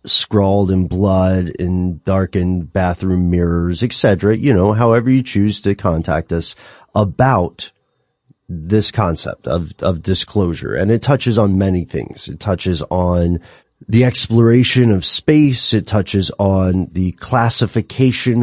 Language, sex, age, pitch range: English, male, 30-49, 90-115 Hz